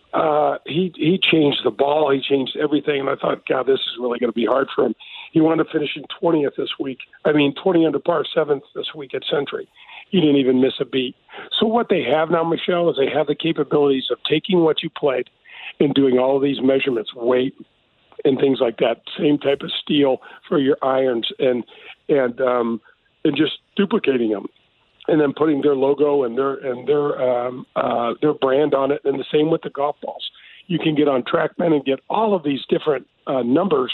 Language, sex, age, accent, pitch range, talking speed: English, male, 50-69, American, 135-165 Hz, 215 wpm